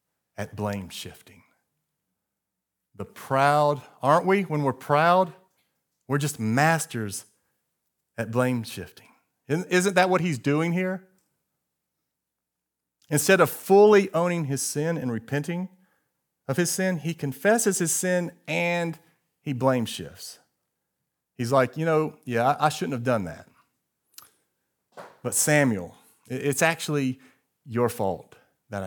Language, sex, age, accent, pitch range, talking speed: English, male, 40-59, American, 115-160 Hz, 120 wpm